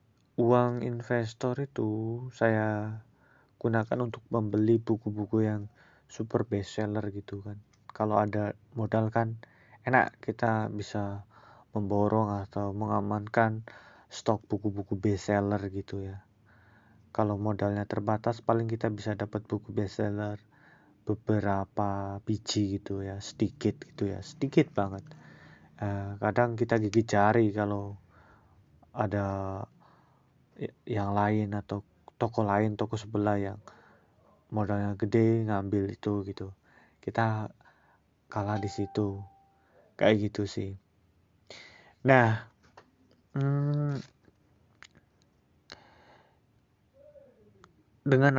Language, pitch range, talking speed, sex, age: Indonesian, 100-115 Hz, 90 wpm, male, 20-39